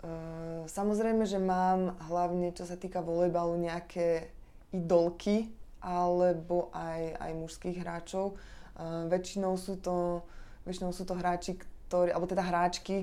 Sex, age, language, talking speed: female, 20-39, Slovak, 130 wpm